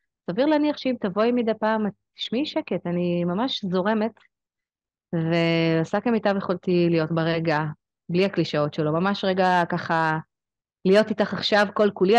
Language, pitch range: Hebrew, 175-235 Hz